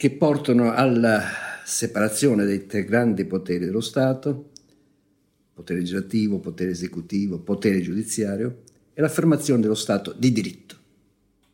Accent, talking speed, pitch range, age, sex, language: native, 115 wpm, 100-140 Hz, 50-69, male, Italian